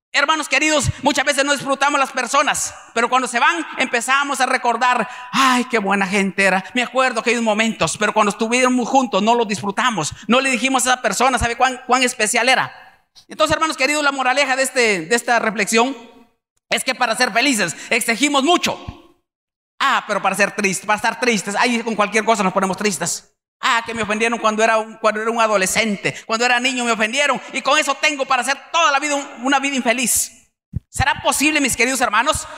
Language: Spanish